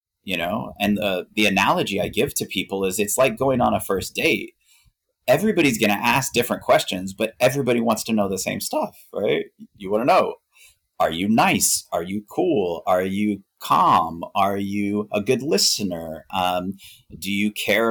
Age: 30-49